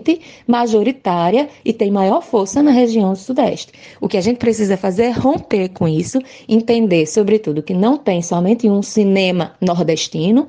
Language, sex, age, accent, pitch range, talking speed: Portuguese, female, 20-39, Brazilian, 185-245 Hz, 160 wpm